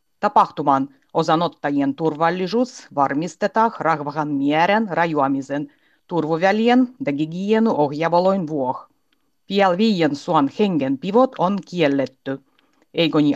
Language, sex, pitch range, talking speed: Finnish, female, 150-220 Hz, 75 wpm